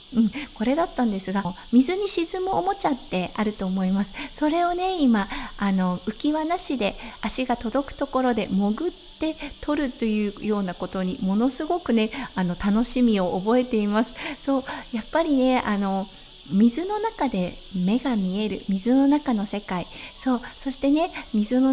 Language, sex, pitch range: Japanese, female, 210-285 Hz